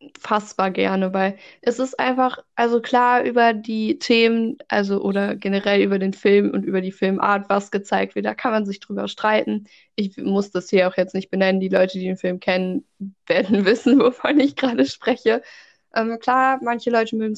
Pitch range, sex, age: 190-235 Hz, female, 20-39